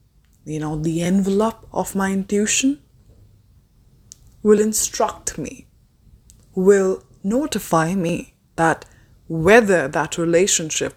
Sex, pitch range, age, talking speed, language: female, 145-185 Hz, 20-39, 95 wpm, English